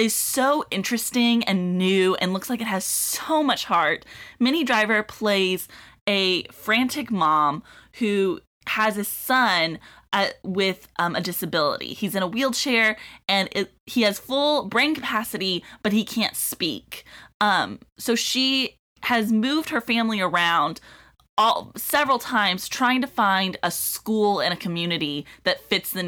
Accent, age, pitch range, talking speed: American, 20-39, 180-240 Hz, 145 wpm